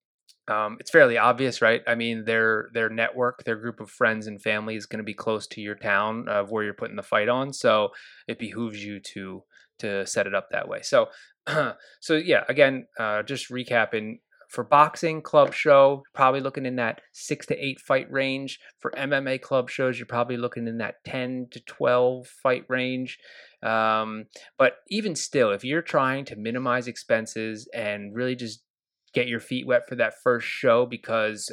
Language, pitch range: English, 110-130 Hz